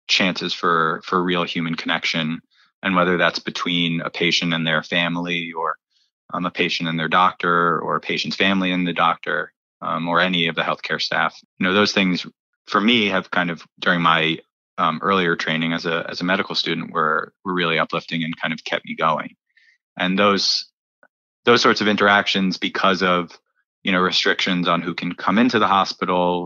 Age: 20-39